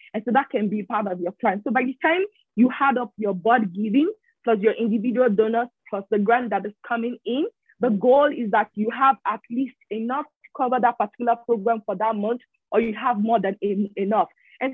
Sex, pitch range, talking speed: female, 215-255 Hz, 220 wpm